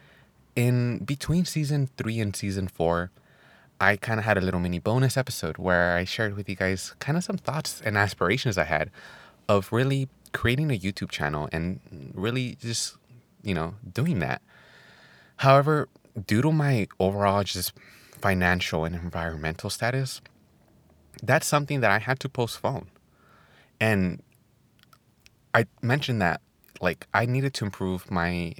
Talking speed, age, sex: 145 wpm, 20-39, male